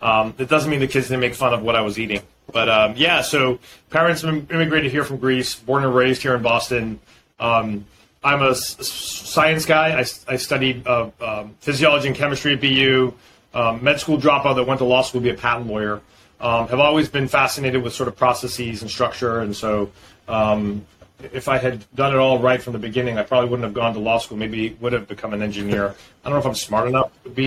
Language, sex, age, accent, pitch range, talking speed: English, male, 30-49, American, 115-135 Hz, 230 wpm